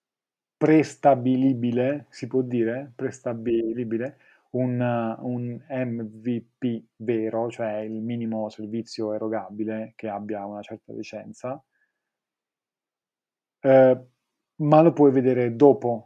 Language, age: Italian, 30-49